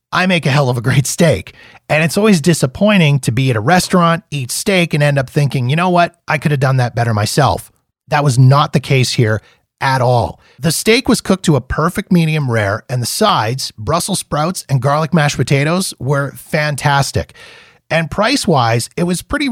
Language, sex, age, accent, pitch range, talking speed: English, male, 30-49, American, 130-175 Hz, 205 wpm